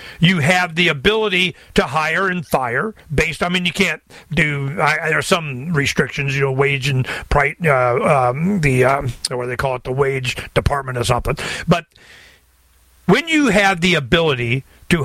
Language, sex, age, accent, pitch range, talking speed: English, male, 50-69, American, 140-195 Hz, 180 wpm